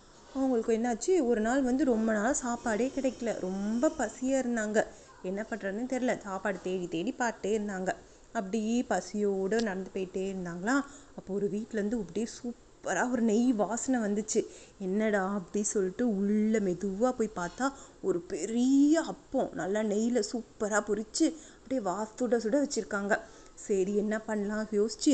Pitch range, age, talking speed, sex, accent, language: 205-255 Hz, 20-39, 135 wpm, female, native, Tamil